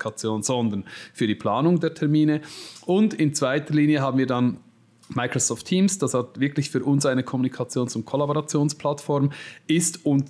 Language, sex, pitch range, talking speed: German, male, 125-145 Hz, 150 wpm